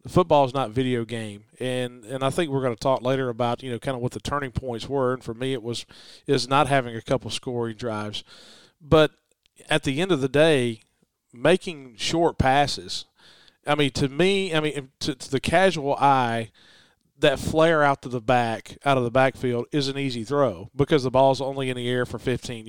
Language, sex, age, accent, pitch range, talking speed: English, male, 40-59, American, 125-145 Hz, 210 wpm